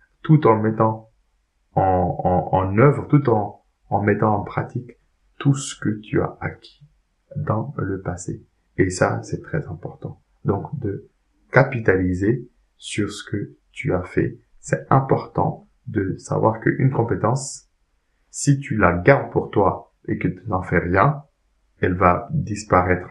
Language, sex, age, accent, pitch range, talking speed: French, male, 20-39, French, 90-135 Hz, 145 wpm